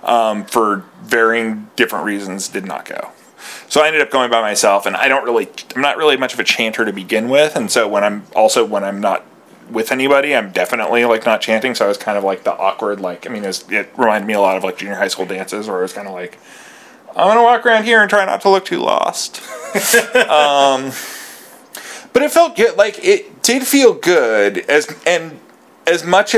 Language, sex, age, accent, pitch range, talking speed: English, male, 30-49, American, 100-165 Hz, 220 wpm